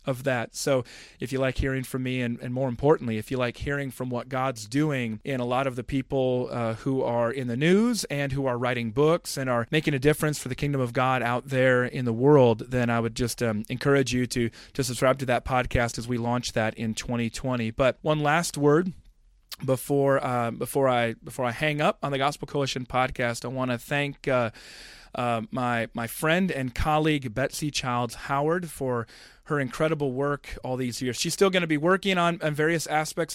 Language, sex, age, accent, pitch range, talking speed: English, male, 30-49, American, 125-150 Hz, 220 wpm